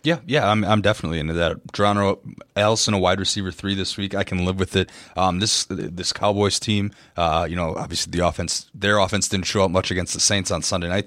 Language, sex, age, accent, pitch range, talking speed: English, male, 20-39, American, 90-100 Hz, 235 wpm